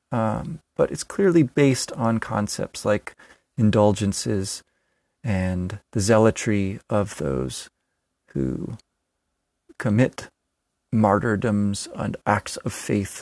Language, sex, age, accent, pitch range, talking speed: English, male, 30-49, American, 110-130 Hz, 95 wpm